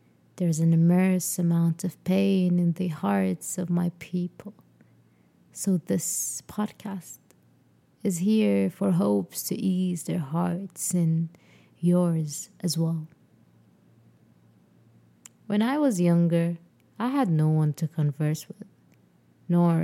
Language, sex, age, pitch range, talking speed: English, female, 20-39, 155-185 Hz, 120 wpm